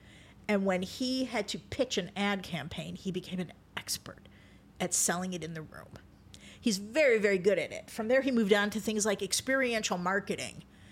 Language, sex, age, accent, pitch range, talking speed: English, female, 50-69, American, 185-235 Hz, 190 wpm